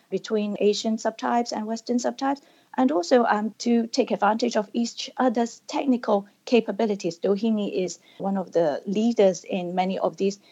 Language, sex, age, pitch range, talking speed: English, female, 30-49, 195-250 Hz, 155 wpm